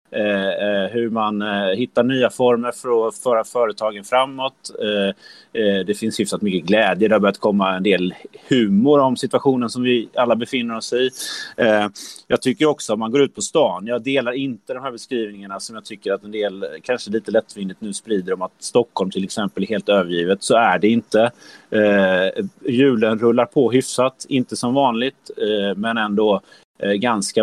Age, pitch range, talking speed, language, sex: 30-49, 100-125 Hz, 190 wpm, Swedish, male